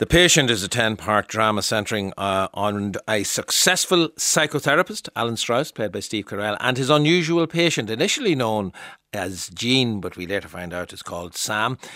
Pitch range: 100-140 Hz